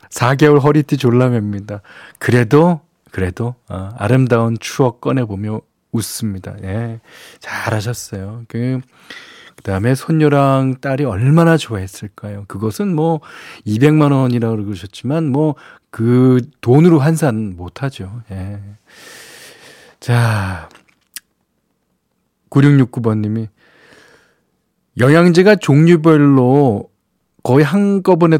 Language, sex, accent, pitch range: Korean, male, native, 115-160 Hz